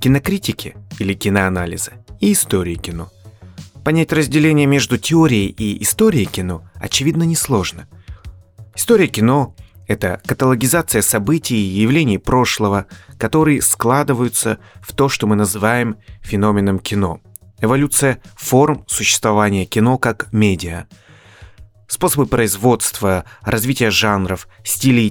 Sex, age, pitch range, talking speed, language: male, 30-49, 95-125 Hz, 105 wpm, Russian